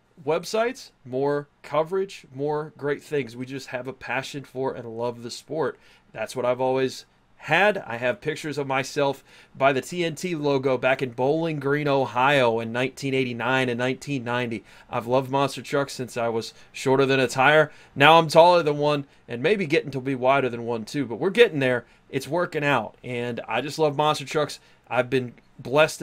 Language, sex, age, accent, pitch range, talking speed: English, male, 30-49, American, 125-155 Hz, 185 wpm